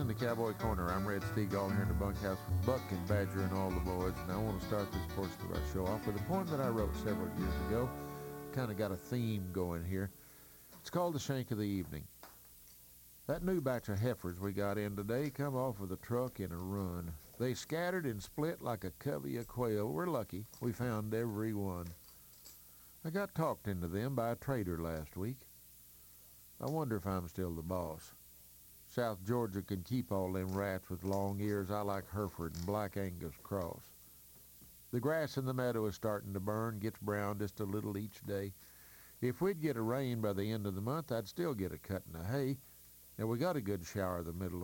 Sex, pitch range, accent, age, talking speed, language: male, 90-120 Hz, American, 50-69, 220 wpm, English